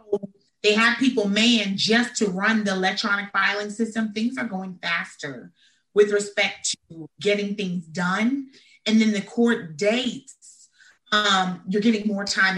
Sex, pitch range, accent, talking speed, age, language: female, 185-235 Hz, American, 150 wpm, 30-49, English